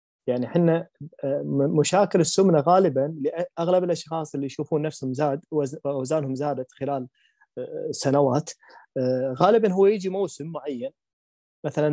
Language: Arabic